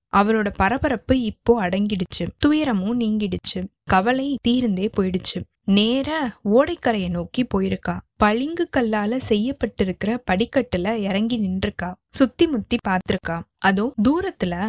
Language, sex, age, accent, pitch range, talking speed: Tamil, female, 20-39, native, 200-255 Hz, 100 wpm